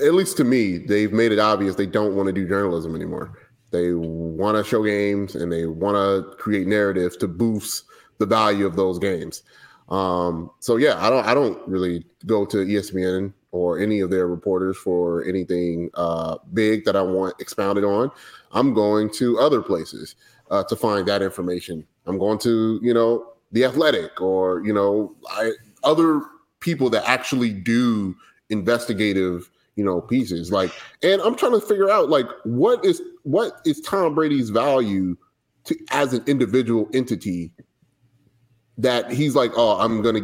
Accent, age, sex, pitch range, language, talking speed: American, 30-49, male, 95-130 Hz, English, 170 wpm